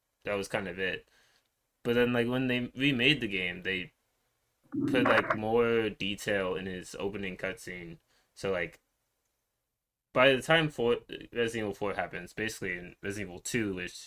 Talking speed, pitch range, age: 160 wpm, 95-125 Hz, 20-39